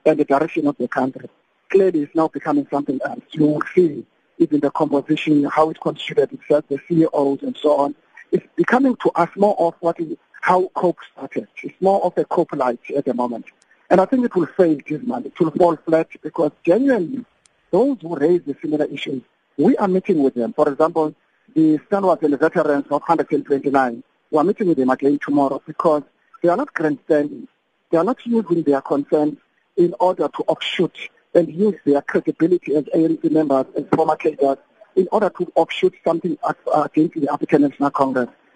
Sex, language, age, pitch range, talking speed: male, English, 50-69, 145-180 Hz, 190 wpm